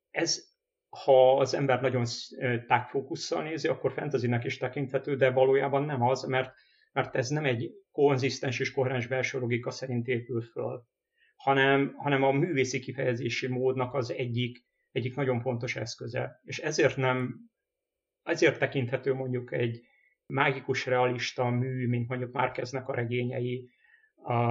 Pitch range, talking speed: 125-140 Hz, 135 wpm